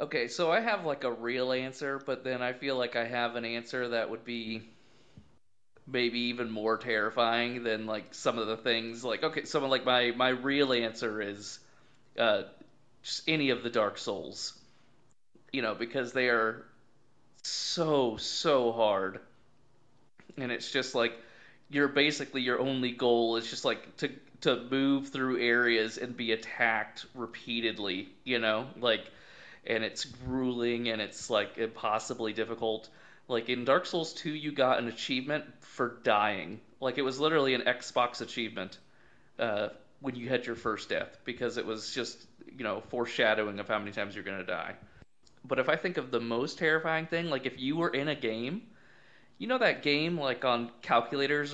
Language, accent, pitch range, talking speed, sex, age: English, American, 115-135 Hz, 170 wpm, male, 30-49